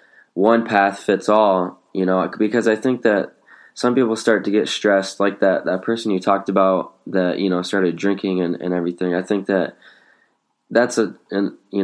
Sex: male